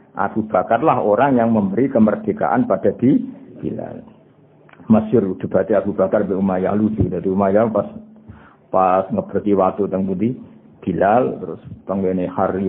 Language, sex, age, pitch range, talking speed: Indonesian, male, 50-69, 95-115 Hz, 130 wpm